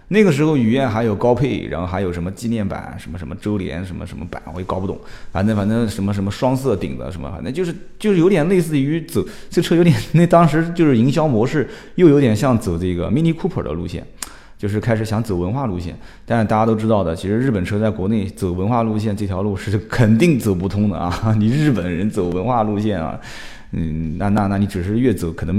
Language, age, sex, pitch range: Chinese, 20-39, male, 95-130 Hz